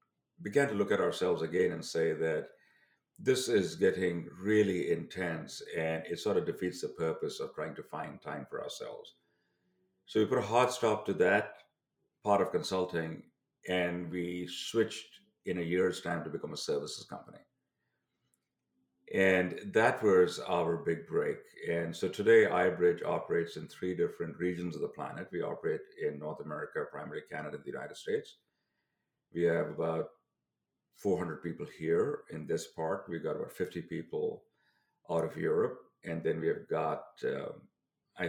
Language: English